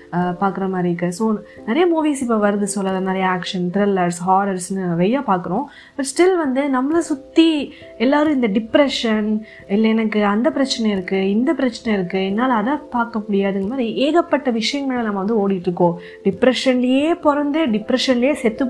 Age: 20-39